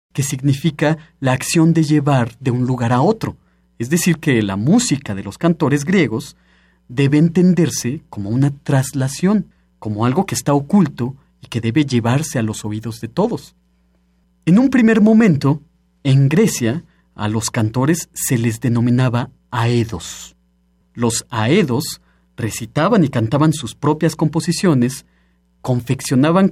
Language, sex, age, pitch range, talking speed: Spanish, male, 40-59, 110-160 Hz, 140 wpm